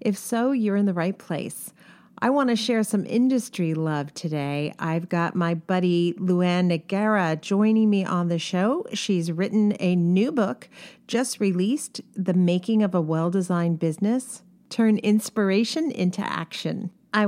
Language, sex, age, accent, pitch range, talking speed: English, female, 40-59, American, 175-215 Hz, 155 wpm